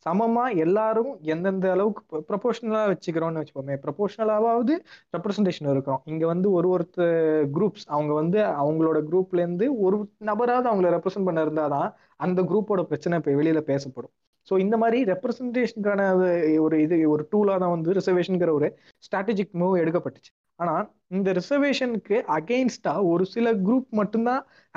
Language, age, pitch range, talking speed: Tamil, 20-39, 150-200 Hz, 135 wpm